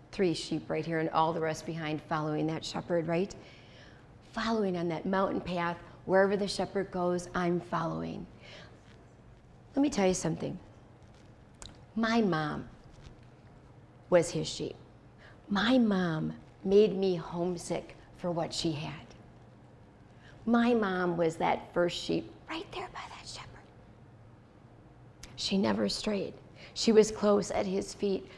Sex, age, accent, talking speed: female, 40-59, American, 135 wpm